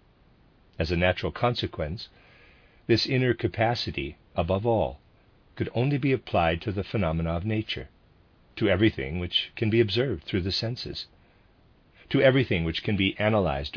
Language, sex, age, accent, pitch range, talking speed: English, male, 50-69, American, 85-115 Hz, 145 wpm